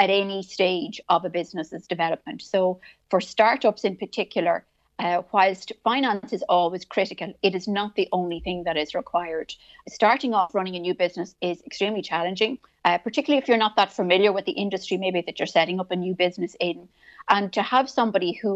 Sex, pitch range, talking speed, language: female, 175-205 Hz, 195 wpm, English